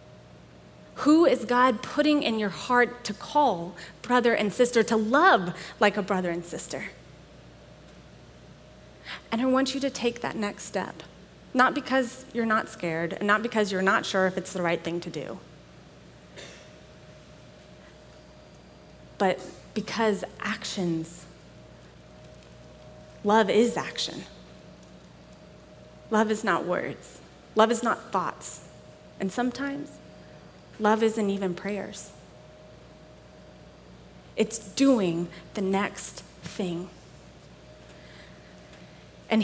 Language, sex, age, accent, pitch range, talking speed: English, female, 30-49, American, 175-225 Hz, 110 wpm